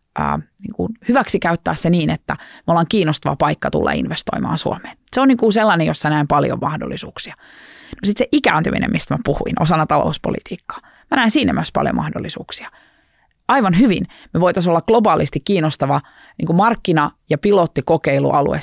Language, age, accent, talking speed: Finnish, 30-49, native, 155 wpm